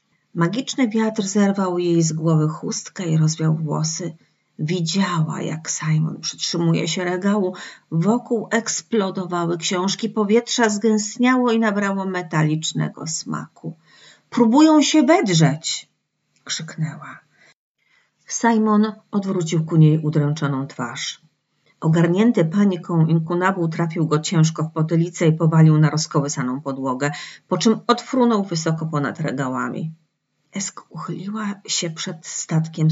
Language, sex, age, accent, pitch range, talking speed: Polish, female, 40-59, native, 160-205 Hz, 110 wpm